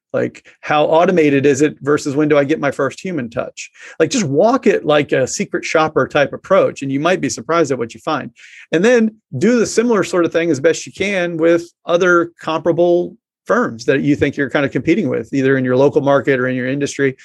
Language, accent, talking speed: English, American, 230 wpm